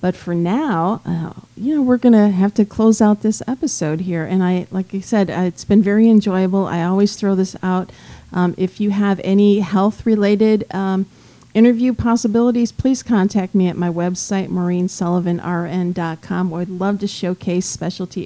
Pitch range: 175-195 Hz